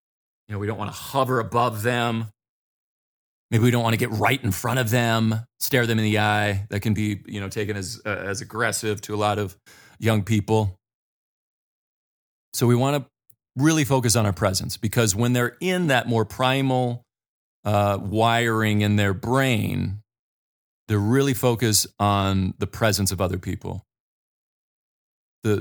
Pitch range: 100-120 Hz